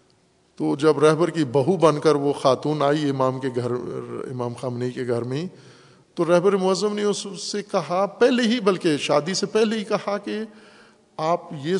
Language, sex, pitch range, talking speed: Urdu, male, 135-180 Hz, 185 wpm